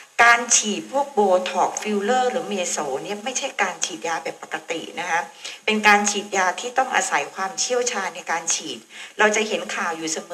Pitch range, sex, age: 190-255 Hz, female, 60-79